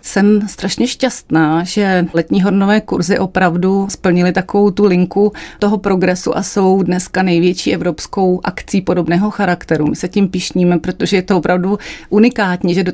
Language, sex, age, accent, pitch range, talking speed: Czech, female, 30-49, native, 175-190 Hz, 155 wpm